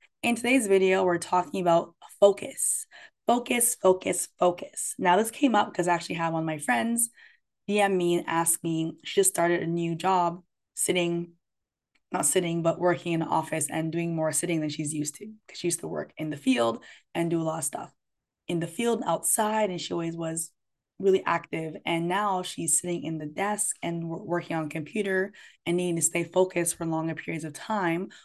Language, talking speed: English, 200 wpm